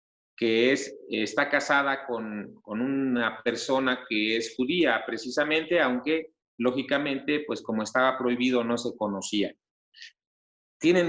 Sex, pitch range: male, 120-160 Hz